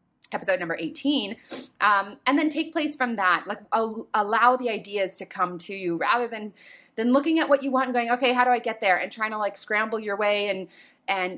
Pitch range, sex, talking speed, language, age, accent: 180-235 Hz, female, 225 wpm, English, 20-39, American